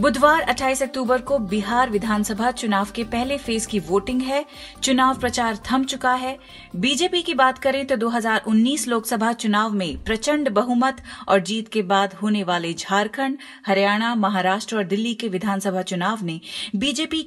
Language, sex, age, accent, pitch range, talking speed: Hindi, female, 30-49, native, 205-270 Hz, 155 wpm